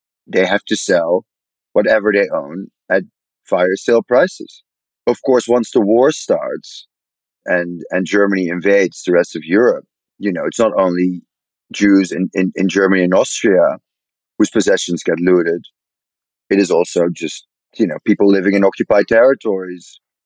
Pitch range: 90-110 Hz